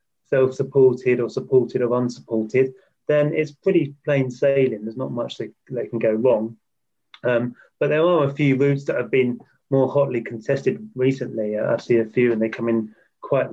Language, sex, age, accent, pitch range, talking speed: English, male, 30-49, British, 115-135 Hz, 185 wpm